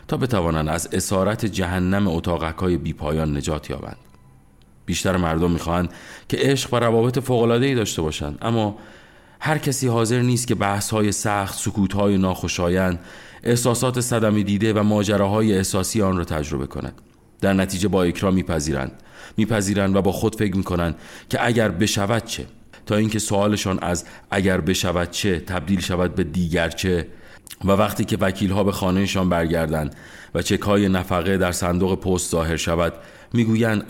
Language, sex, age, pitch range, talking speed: Persian, male, 40-59, 85-105 Hz, 150 wpm